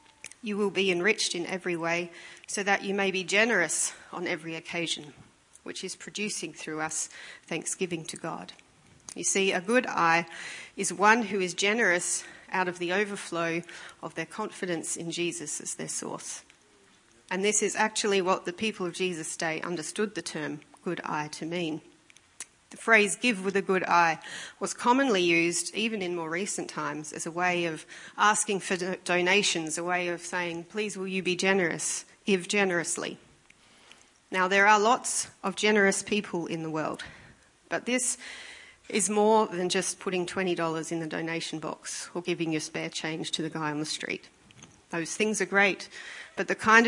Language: English